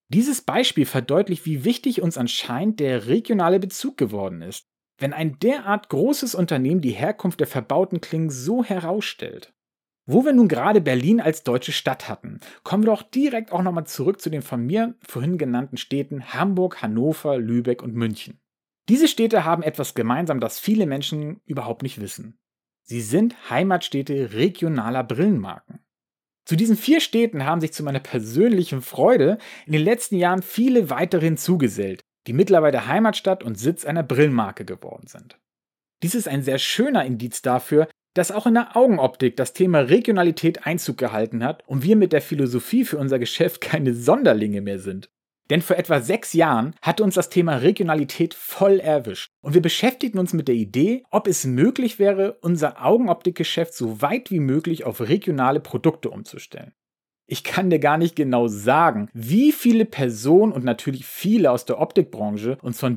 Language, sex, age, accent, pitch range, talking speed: German, male, 40-59, German, 130-195 Hz, 165 wpm